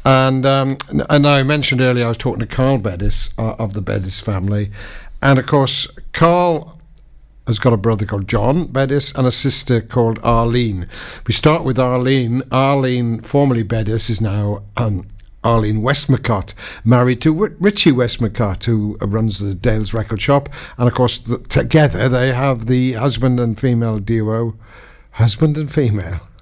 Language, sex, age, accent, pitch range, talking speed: English, male, 60-79, British, 105-130 Hz, 155 wpm